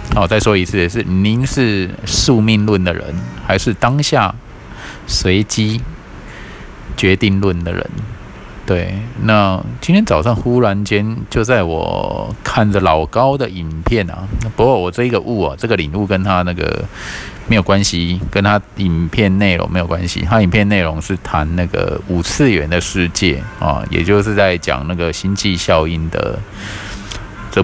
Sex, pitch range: male, 90-110 Hz